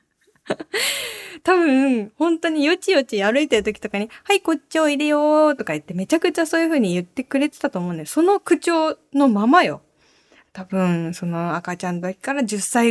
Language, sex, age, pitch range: Japanese, female, 20-39, 190-290 Hz